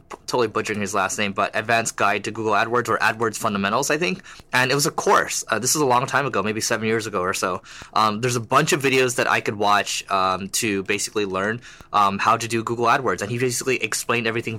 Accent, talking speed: American, 245 wpm